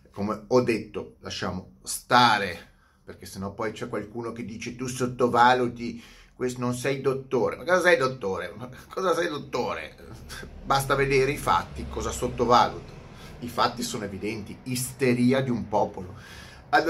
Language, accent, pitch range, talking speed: Italian, native, 100-130 Hz, 145 wpm